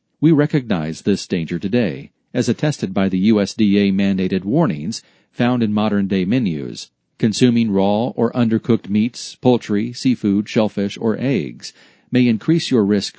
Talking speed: 130 wpm